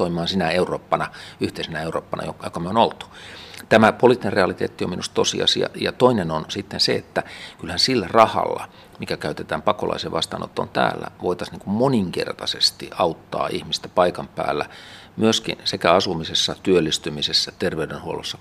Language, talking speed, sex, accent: Finnish, 130 wpm, male, native